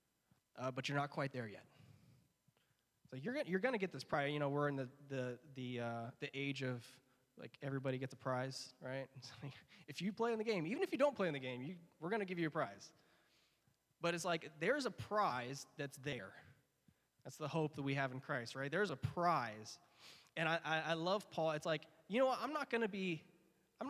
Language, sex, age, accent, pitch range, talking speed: English, male, 20-39, American, 130-175 Hz, 235 wpm